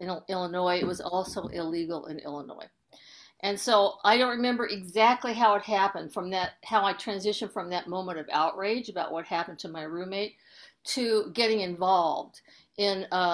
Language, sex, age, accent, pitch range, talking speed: English, female, 50-69, American, 180-215 Hz, 170 wpm